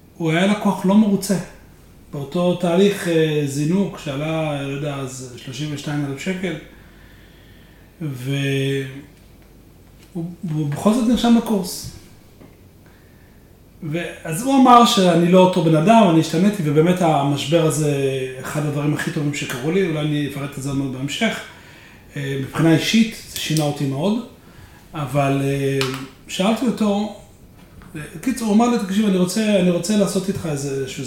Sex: male